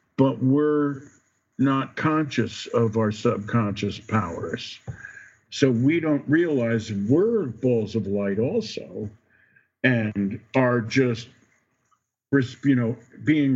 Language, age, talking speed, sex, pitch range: English, 50-69, 100 wpm, male, 110-135 Hz